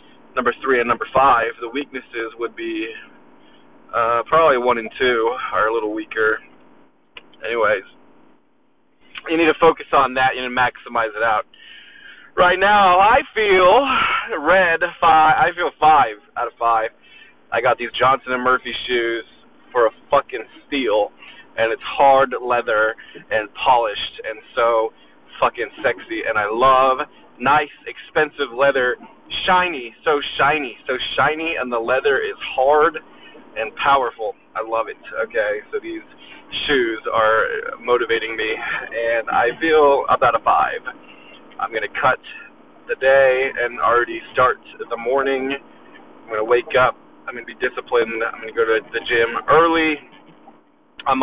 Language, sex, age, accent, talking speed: English, male, 20-39, American, 150 wpm